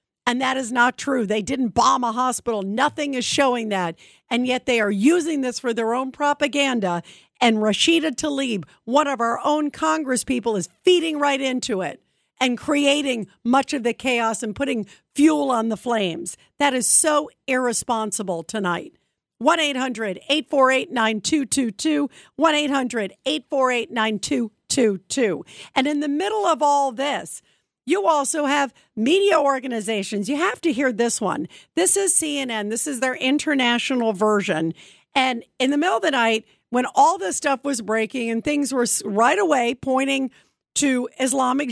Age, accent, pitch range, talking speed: 50-69, American, 225-285 Hz, 160 wpm